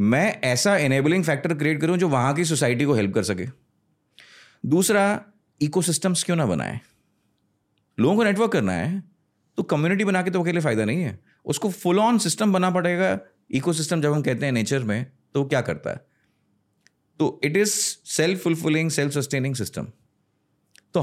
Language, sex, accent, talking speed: Hindi, male, native, 170 wpm